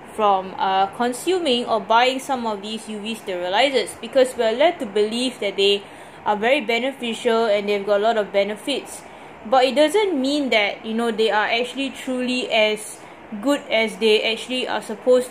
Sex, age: female, 20-39